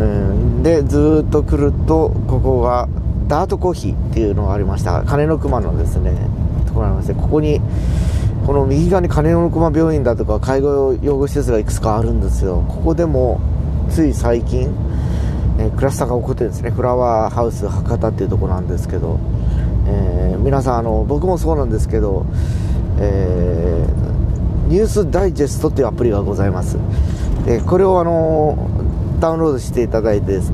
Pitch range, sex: 95-135 Hz, male